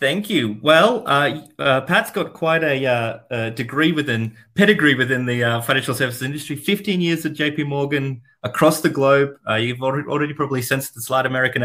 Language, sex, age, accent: English, male, 30-49, Australian